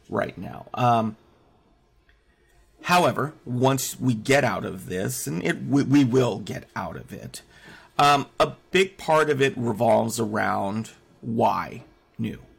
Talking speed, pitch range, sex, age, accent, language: 140 wpm, 115-155 Hz, male, 40-59, American, English